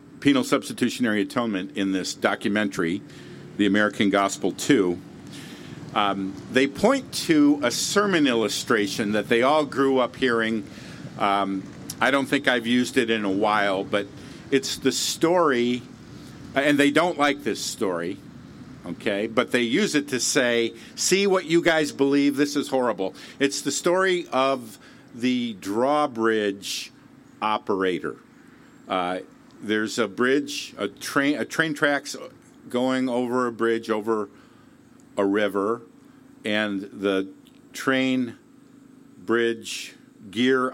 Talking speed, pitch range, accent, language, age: 125 wpm, 105-145 Hz, American, English, 50-69